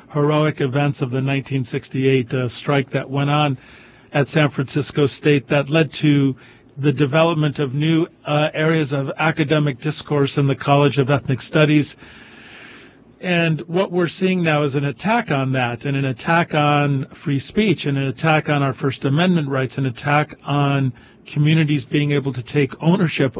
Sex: male